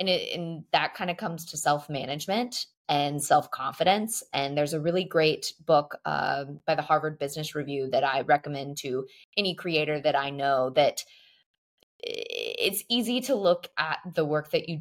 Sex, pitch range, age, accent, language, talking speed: female, 150-215 Hz, 20-39, American, English, 165 wpm